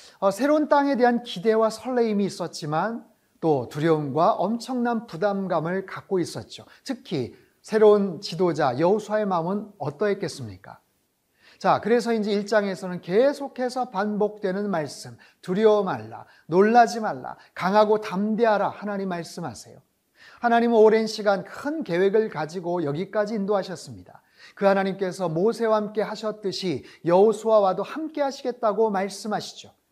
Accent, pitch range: native, 175-220 Hz